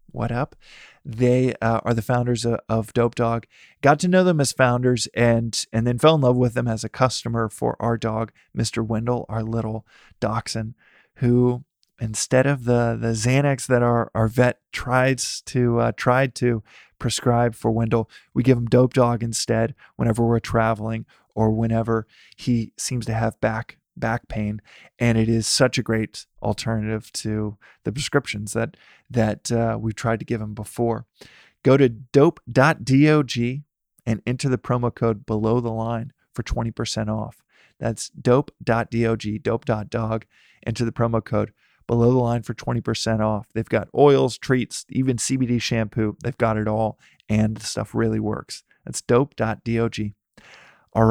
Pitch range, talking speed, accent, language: 110-125 Hz, 165 wpm, American, English